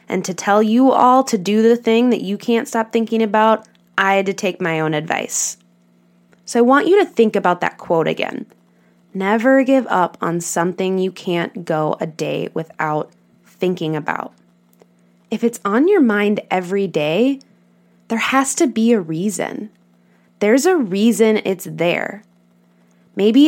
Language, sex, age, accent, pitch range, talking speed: English, female, 20-39, American, 165-230 Hz, 165 wpm